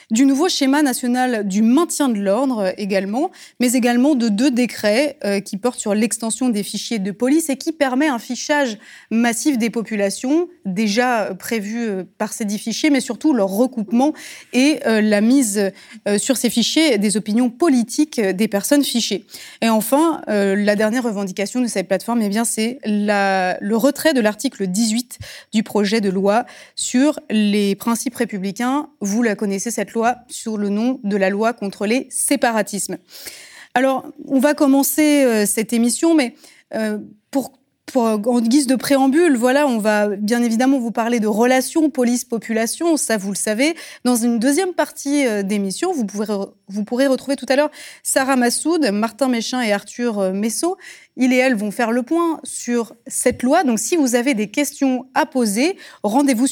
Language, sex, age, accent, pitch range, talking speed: French, female, 20-39, French, 210-275 Hz, 165 wpm